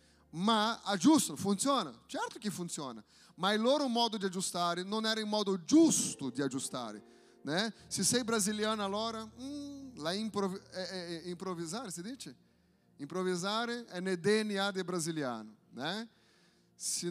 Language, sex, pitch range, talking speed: Italian, male, 170-220 Hz, 125 wpm